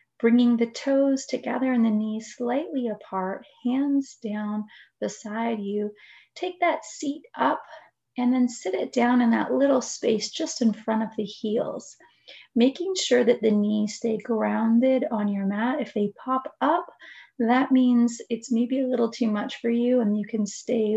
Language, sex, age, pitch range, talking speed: English, female, 30-49, 215-250 Hz, 170 wpm